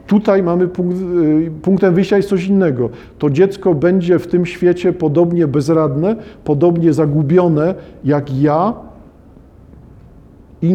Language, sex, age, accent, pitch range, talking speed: Polish, male, 50-69, native, 155-185 Hz, 115 wpm